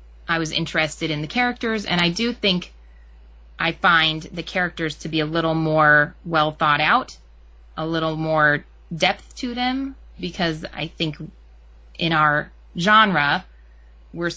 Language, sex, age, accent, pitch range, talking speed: English, female, 30-49, American, 120-170 Hz, 145 wpm